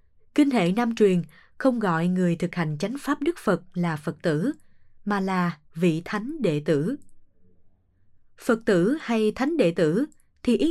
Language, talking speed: Vietnamese, 170 wpm